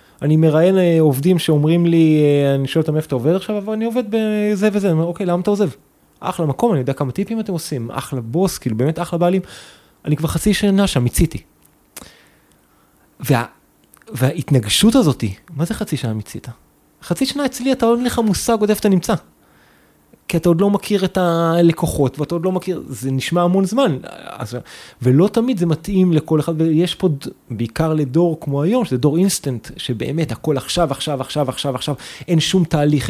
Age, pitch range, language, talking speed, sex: 30-49, 135-185 Hz, Hebrew, 190 wpm, male